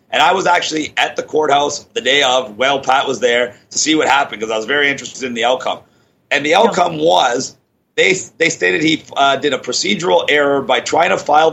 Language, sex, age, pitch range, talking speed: English, male, 30-49, 130-170 Hz, 225 wpm